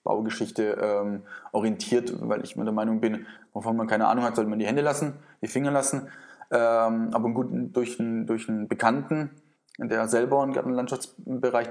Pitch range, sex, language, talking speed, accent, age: 110-130 Hz, male, German, 185 wpm, German, 20-39